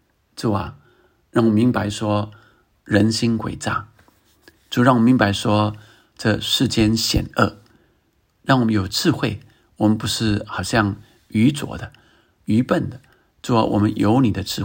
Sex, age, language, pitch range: male, 50-69, Chinese, 105-115 Hz